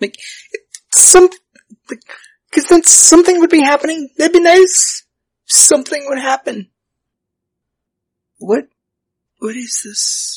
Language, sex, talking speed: English, male, 115 wpm